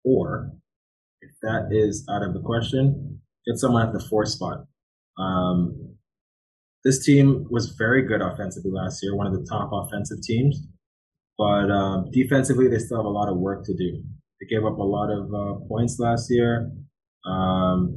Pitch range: 100-125 Hz